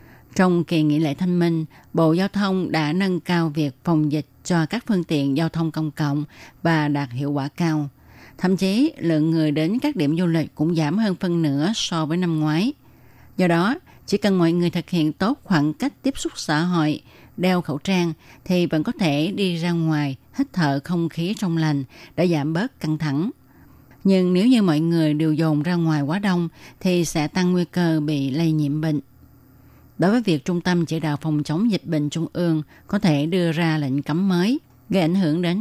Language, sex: Vietnamese, female